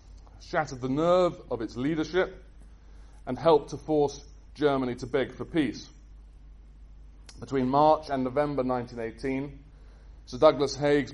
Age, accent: 30-49, British